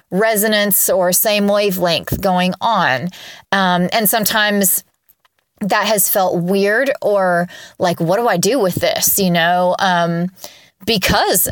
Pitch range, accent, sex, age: 180-215 Hz, American, female, 20-39